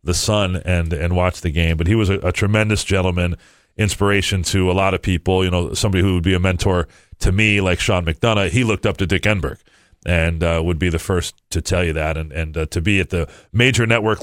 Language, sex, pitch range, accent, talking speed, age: English, male, 85-100 Hz, American, 245 wpm, 40-59